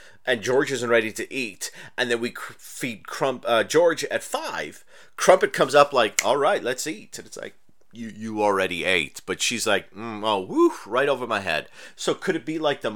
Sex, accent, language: male, American, English